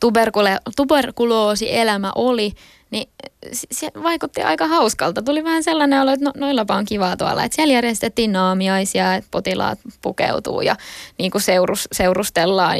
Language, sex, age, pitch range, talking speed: Finnish, female, 20-39, 195-245 Hz, 130 wpm